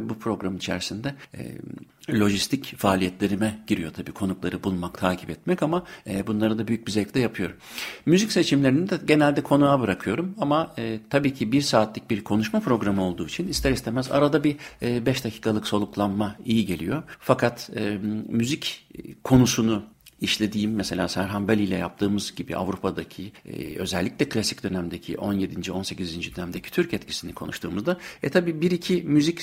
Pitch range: 100-135 Hz